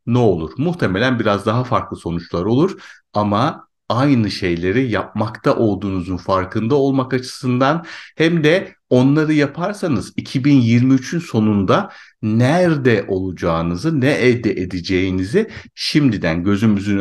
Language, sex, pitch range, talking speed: Turkish, male, 100-135 Hz, 100 wpm